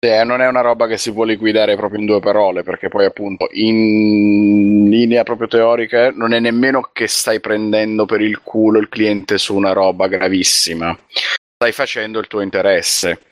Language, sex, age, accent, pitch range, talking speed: Italian, male, 30-49, native, 95-110 Hz, 180 wpm